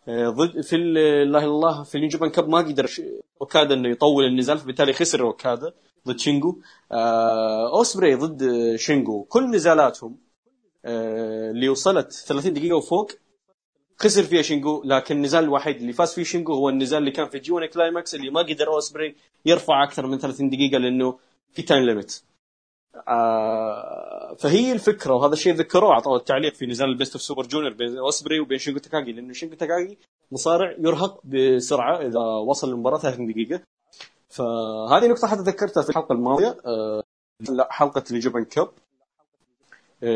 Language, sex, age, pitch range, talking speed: Arabic, male, 20-39, 125-175 Hz, 150 wpm